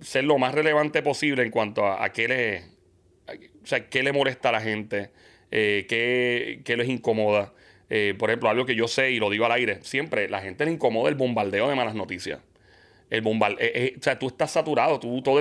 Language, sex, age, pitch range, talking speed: English, male, 30-49, 120-150 Hz, 225 wpm